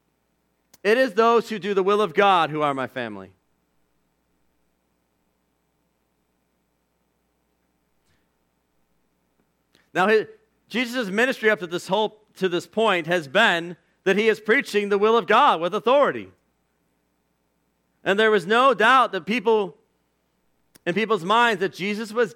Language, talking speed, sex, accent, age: English, 130 wpm, male, American, 40-59